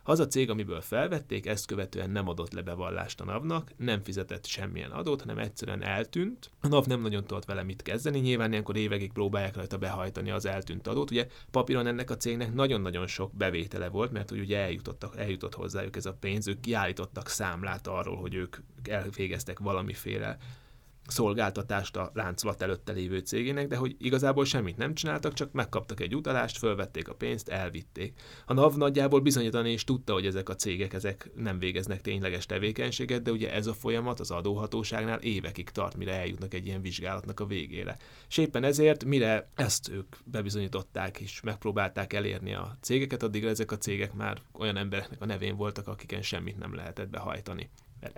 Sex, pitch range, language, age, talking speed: male, 95-120 Hz, Hungarian, 30-49, 175 wpm